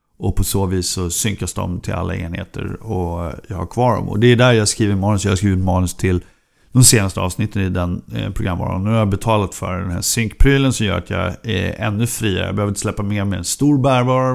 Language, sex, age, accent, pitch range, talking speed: Swedish, male, 50-69, native, 95-125 Hz, 245 wpm